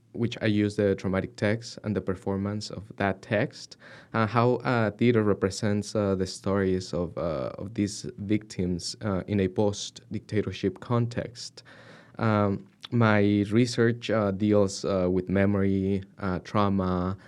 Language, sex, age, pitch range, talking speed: English, male, 20-39, 95-110 Hz, 130 wpm